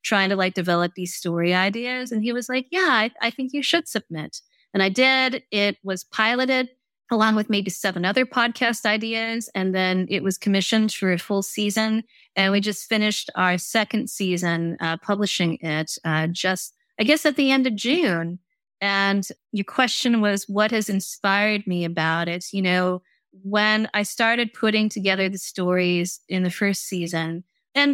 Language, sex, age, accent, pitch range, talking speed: English, female, 30-49, American, 185-230 Hz, 180 wpm